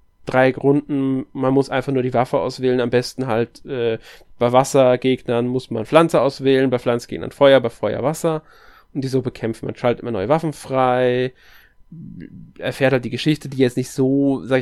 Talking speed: 180 wpm